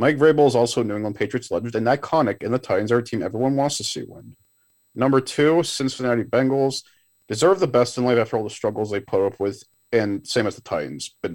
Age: 40-59